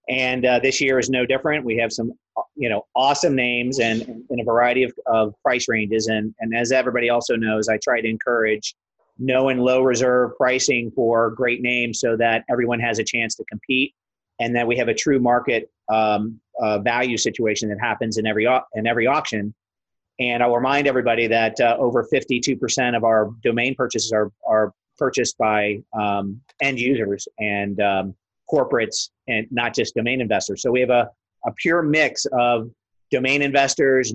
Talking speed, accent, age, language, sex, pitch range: 185 wpm, American, 30-49, English, male, 110-130 Hz